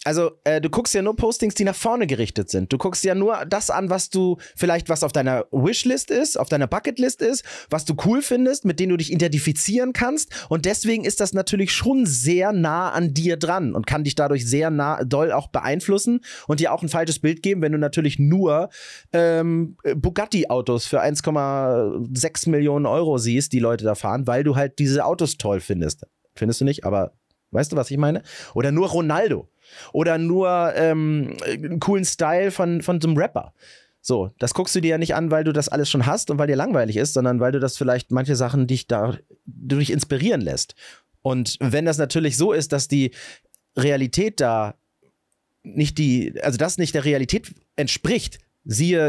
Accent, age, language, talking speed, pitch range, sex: German, 30-49, German, 195 wpm, 135-180 Hz, male